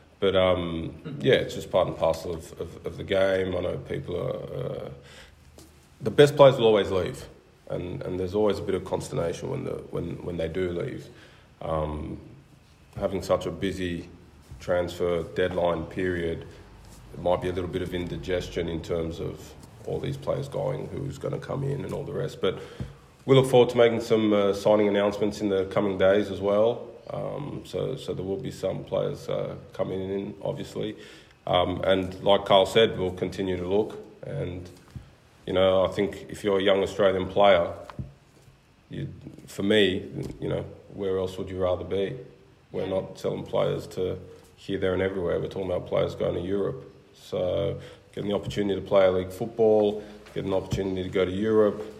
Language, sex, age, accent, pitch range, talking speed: English, male, 20-39, Australian, 90-100 Hz, 185 wpm